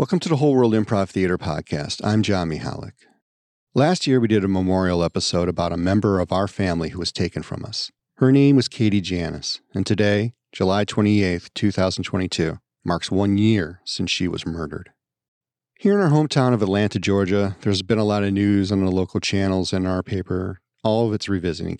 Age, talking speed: 40-59, 195 wpm